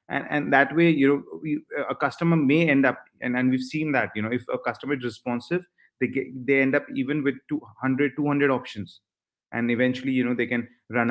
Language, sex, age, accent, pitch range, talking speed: English, male, 30-49, Indian, 115-135 Hz, 215 wpm